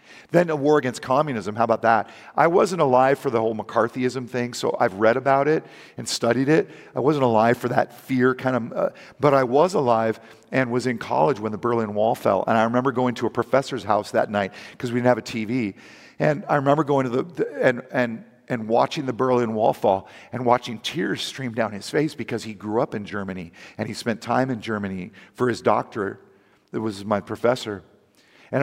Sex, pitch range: male, 115-140 Hz